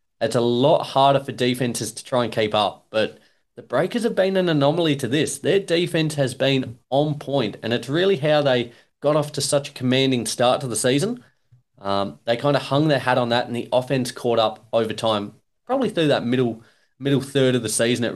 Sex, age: male, 30-49